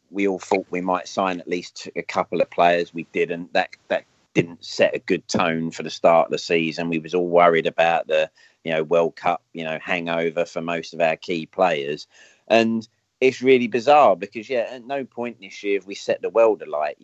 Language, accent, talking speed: English, British, 220 wpm